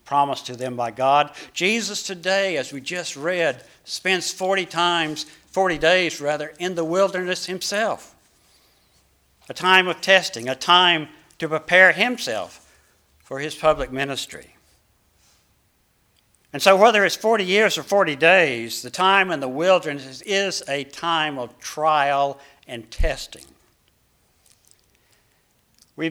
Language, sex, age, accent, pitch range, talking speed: English, male, 60-79, American, 135-185 Hz, 130 wpm